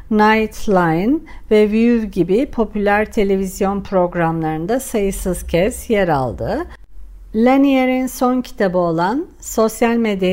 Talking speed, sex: 100 wpm, female